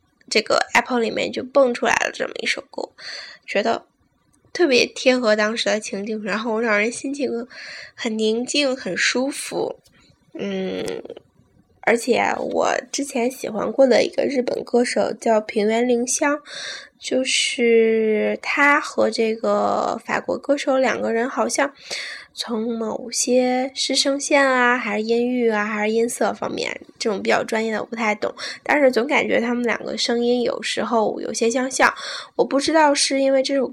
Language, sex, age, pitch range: Chinese, female, 10-29, 220-270 Hz